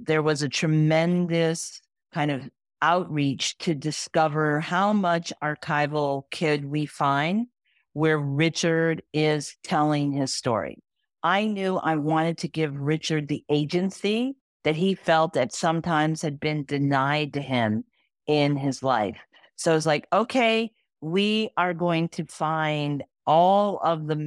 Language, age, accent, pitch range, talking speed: English, 50-69, American, 150-180 Hz, 140 wpm